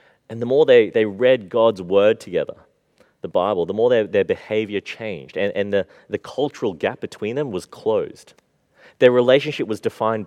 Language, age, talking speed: English, 30-49, 180 wpm